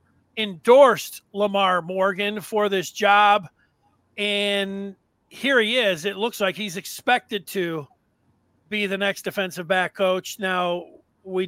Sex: male